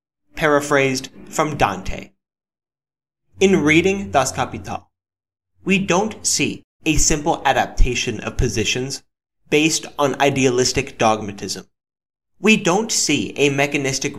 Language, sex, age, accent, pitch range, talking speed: English, male, 20-39, American, 120-155 Hz, 100 wpm